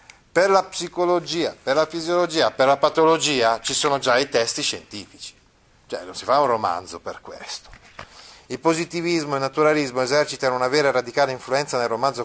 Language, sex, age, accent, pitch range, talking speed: Italian, male, 40-59, native, 125-170 Hz, 175 wpm